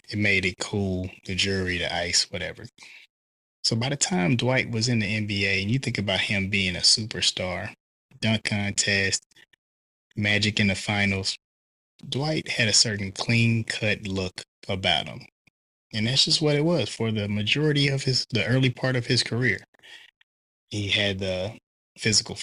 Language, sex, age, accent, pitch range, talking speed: English, male, 20-39, American, 100-120 Hz, 165 wpm